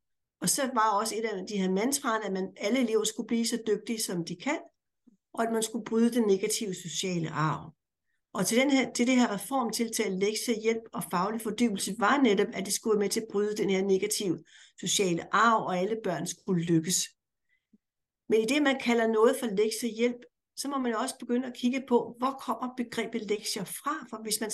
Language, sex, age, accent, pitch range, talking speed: Danish, female, 60-79, native, 200-250 Hz, 210 wpm